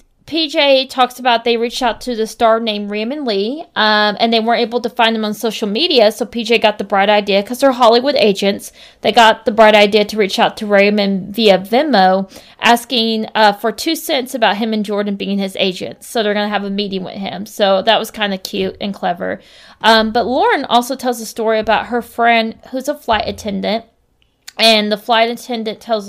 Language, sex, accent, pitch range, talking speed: English, female, American, 205-235 Hz, 215 wpm